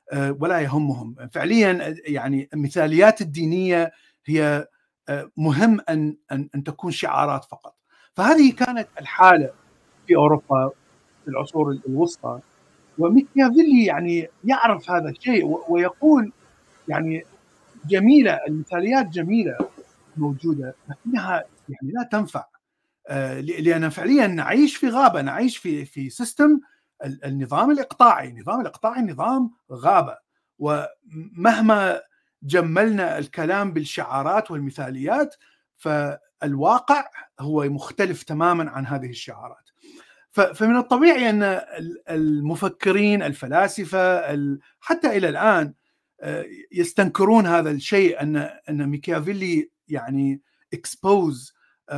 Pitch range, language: 145-225 Hz, Arabic